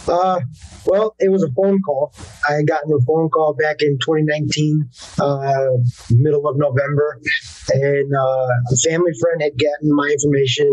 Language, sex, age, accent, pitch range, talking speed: English, male, 30-49, American, 130-150 Hz, 160 wpm